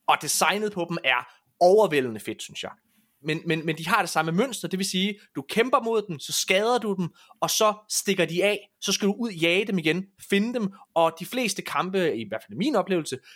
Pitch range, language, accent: 155-205 Hz, Danish, native